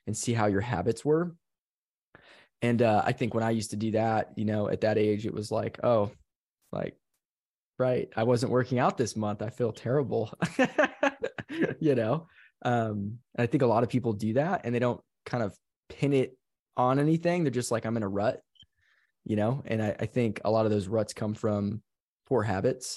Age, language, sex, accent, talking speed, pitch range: 20-39, English, male, American, 205 wpm, 105-125 Hz